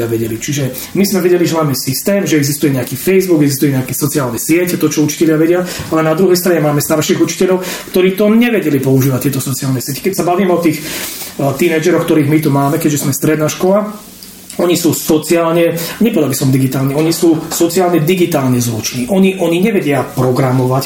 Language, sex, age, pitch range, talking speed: Slovak, male, 30-49, 135-175 Hz, 180 wpm